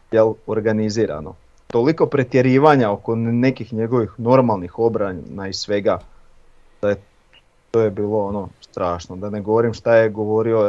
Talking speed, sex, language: 120 wpm, male, Croatian